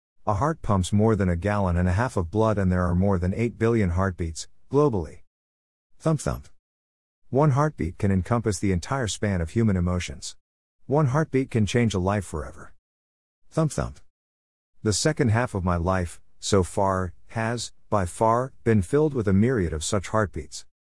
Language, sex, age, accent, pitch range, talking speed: English, male, 50-69, American, 85-110 Hz, 175 wpm